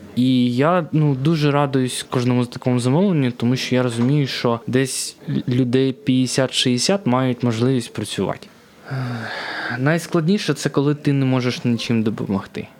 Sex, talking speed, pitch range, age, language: male, 135 wpm, 110-135 Hz, 20-39, Ukrainian